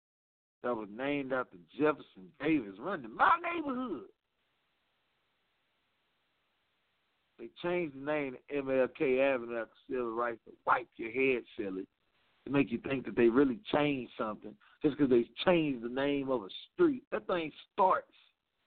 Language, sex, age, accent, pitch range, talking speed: English, male, 50-69, American, 135-225 Hz, 150 wpm